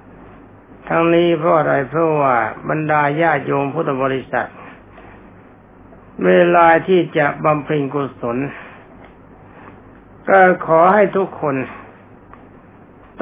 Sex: male